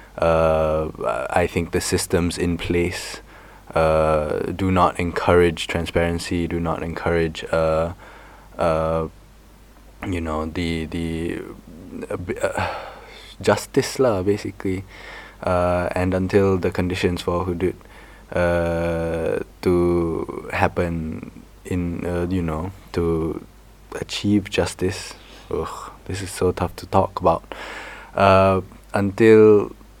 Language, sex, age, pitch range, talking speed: English, male, 20-39, 80-95 Hz, 100 wpm